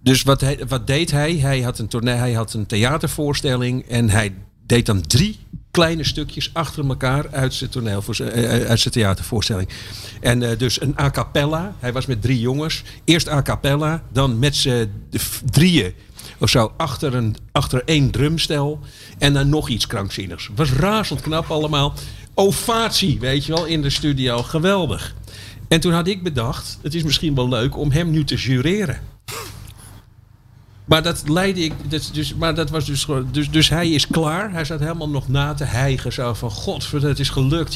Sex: male